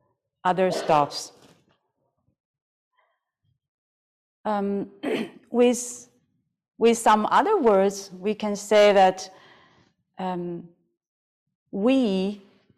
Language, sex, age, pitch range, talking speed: German, female, 40-59, 180-220 Hz, 65 wpm